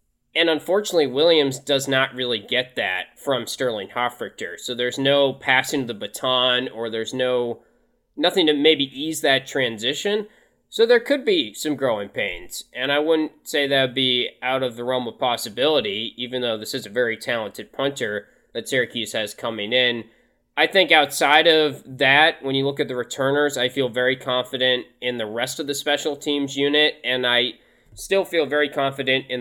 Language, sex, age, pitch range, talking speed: English, male, 20-39, 120-145 Hz, 180 wpm